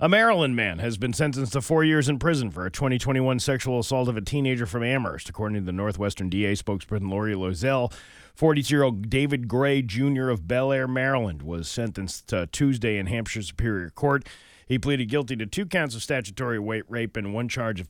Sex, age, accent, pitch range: male, 40-59, American, 95-130 Hz